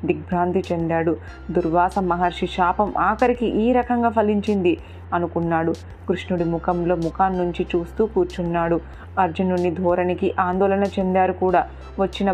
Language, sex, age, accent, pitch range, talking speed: Telugu, female, 30-49, native, 170-195 Hz, 100 wpm